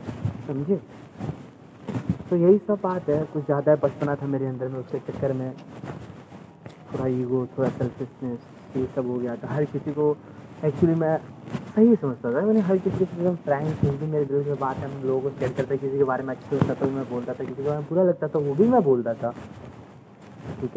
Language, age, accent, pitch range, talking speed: Hindi, 20-39, native, 130-160 Hz, 205 wpm